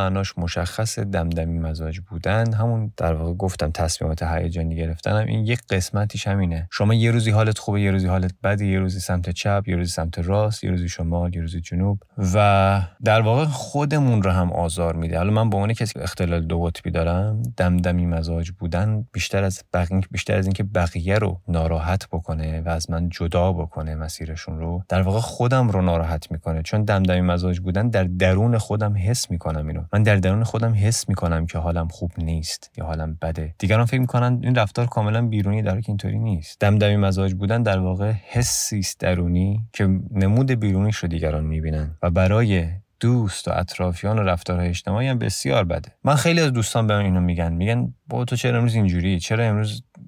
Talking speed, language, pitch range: 185 wpm, Persian, 85-110 Hz